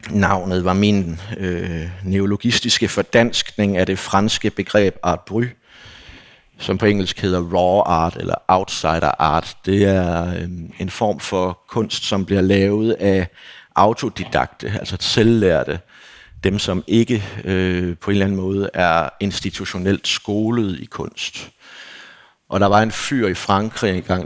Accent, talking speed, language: native, 140 wpm, Danish